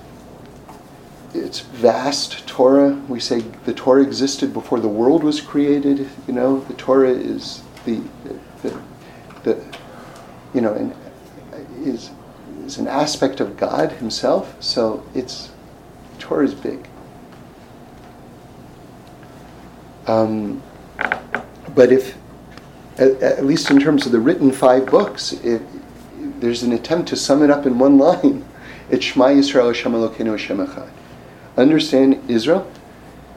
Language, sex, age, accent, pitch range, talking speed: English, male, 50-69, American, 120-150 Hz, 125 wpm